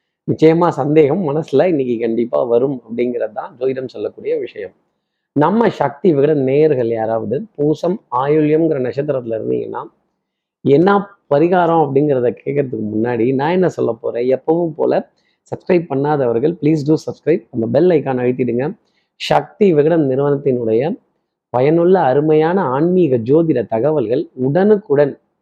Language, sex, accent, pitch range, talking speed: Tamil, male, native, 130-170 Hz, 115 wpm